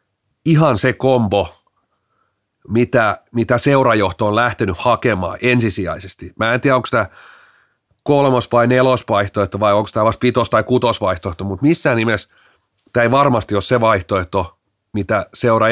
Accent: native